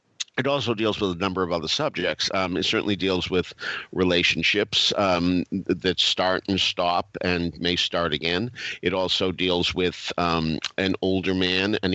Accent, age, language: American, 50-69, English